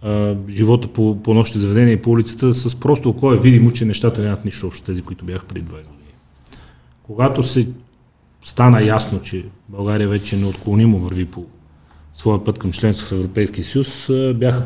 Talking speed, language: 170 wpm, Bulgarian